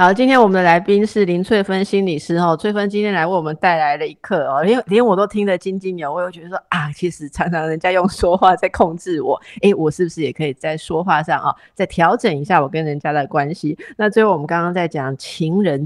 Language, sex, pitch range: Chinese, female, 155-195 Hz